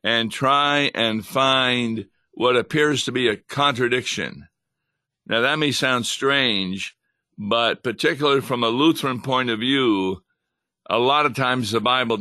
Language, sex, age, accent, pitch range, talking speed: English, male, 60-79, American, 115-145 Hz, 145 wpm